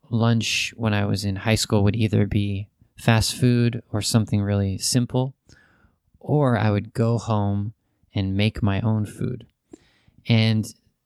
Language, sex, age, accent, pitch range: Japanese, male, 20-39, American, 100-120 Hz